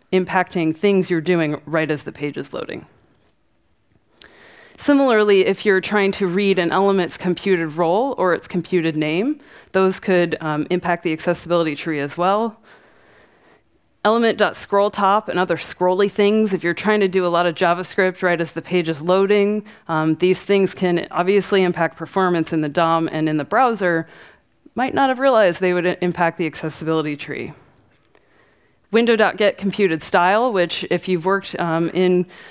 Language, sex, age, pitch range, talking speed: English, female, 20-39, 165-195 Hz, 155 wpm